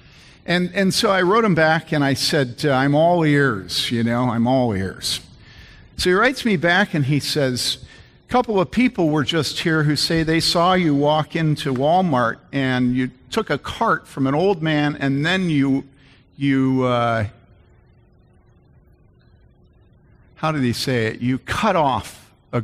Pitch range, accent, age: 115-155 Hz, American, 50-69